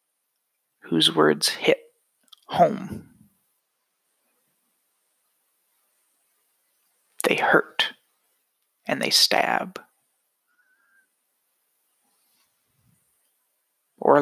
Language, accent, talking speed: English, American, 40 wpm